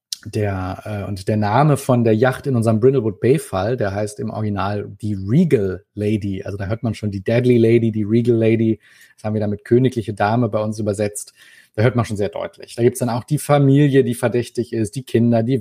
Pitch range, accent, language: 105-130 Hz, German, German